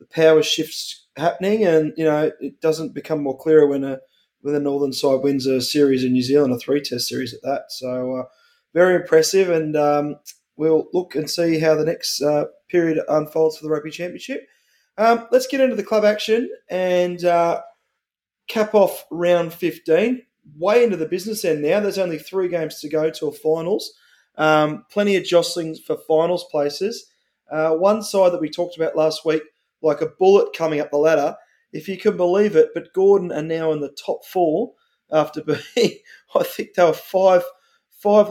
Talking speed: 190 wpm